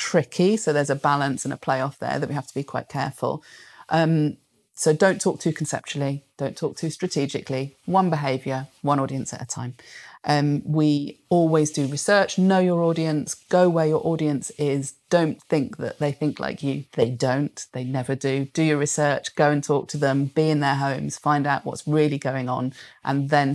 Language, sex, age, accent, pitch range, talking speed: English, female, 30-49, British, 140-165 Hz, 200 wpm